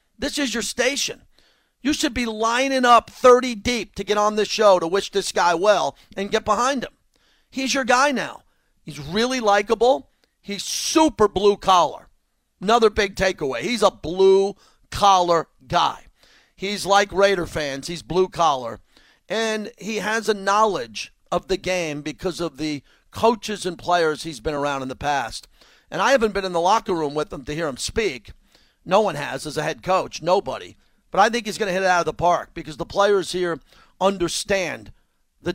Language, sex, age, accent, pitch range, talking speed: English, male, 50-69, American, 175-225 Hz, 180 wpm